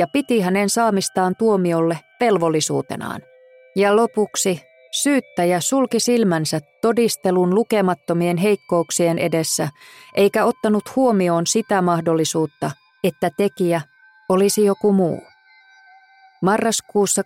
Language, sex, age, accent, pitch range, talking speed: Finnish, female, 20-39, native, 170-215 Hz, 90 wpm